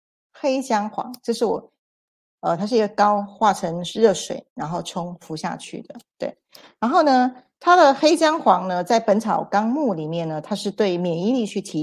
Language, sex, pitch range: Chinese, female, 175-240 Hz